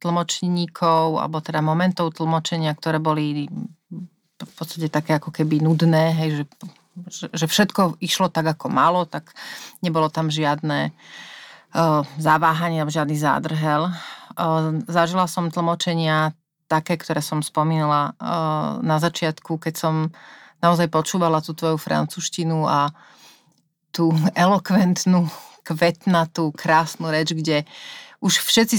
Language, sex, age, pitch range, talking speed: Slovak, female, 30-49, 155-180 Hz, 115 wpm